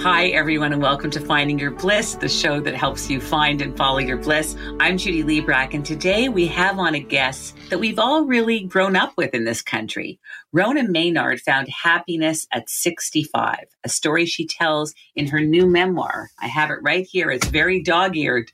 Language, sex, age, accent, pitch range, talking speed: English, female, 50-69, American, 140-180 Hz, 195 wpm